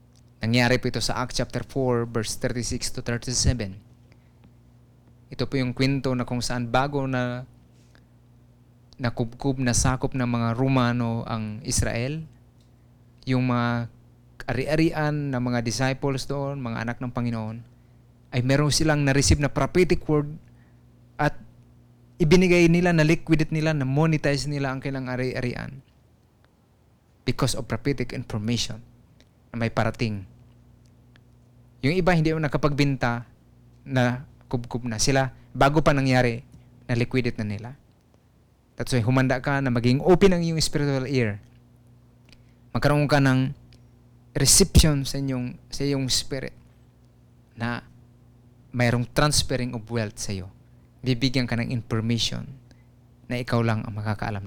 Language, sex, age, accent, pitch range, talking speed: Filipino, male, 20-39, native, 120-135 Hz, 125 wpm